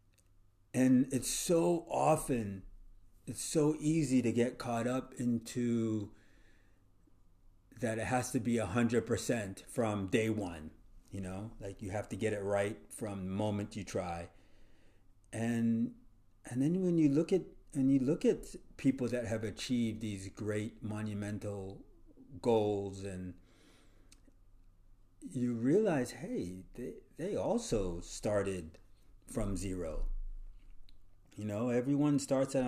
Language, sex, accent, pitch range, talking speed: English, male, American, 95-120 Hz, 125 wpm